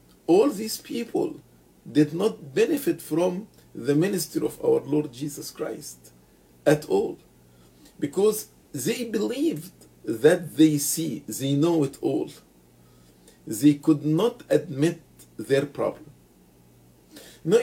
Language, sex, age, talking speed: English, male, 50-69, 110 wpm